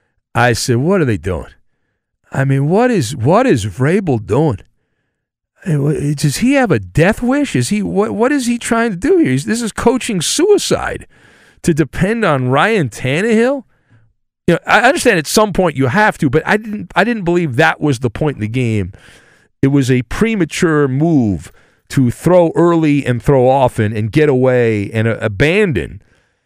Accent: American